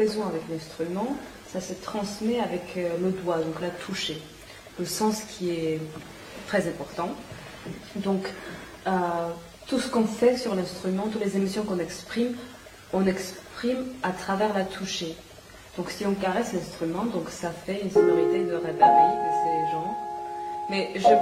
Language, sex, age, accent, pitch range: Chinese, female, 30-49, French, 165-205 Hz